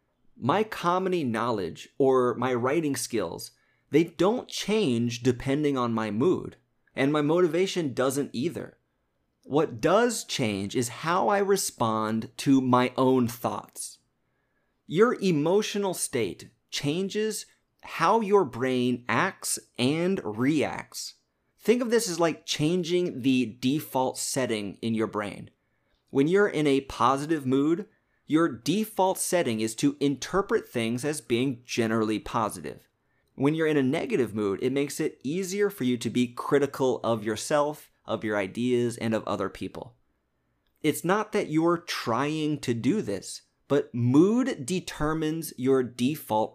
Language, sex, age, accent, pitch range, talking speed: English, male, 30-49, American, 120-175 Hz, 135 wpm